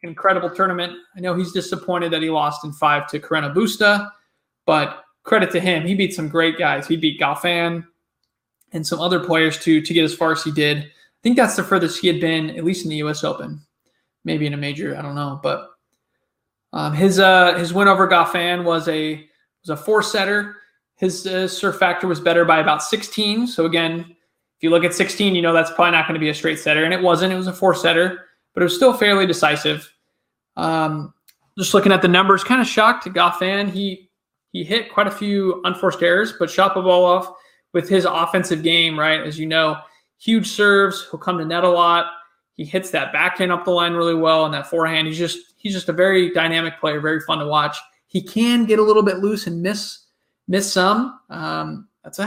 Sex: male